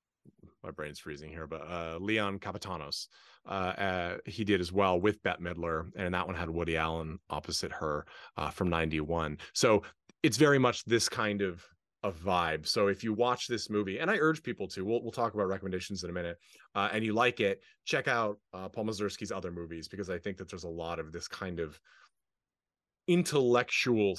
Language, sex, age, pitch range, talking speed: English, male, 30-49, 90-125 Hz, 200 wpm